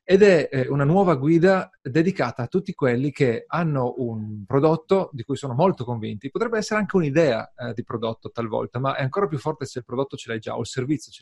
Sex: male